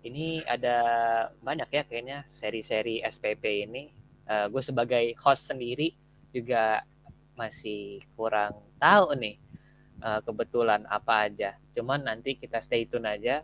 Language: Indonesian